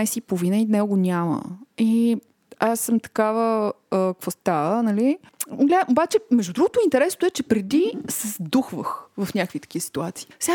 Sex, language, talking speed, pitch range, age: female, Bulgarian, 150 wpm, 190-270 Hz, 20-39